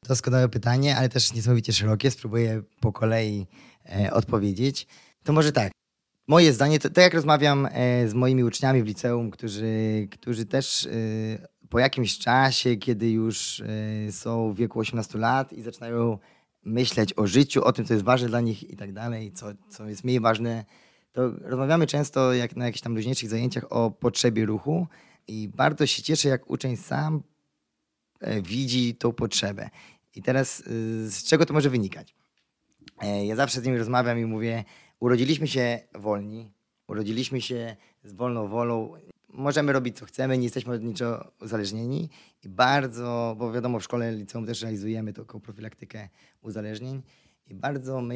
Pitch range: 110-130 Hz